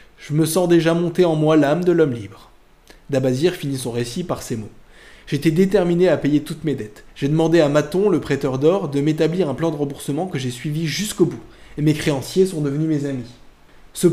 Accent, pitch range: French, 130-170 Hz